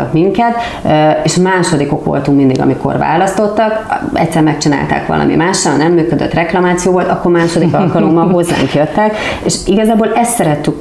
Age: 30-49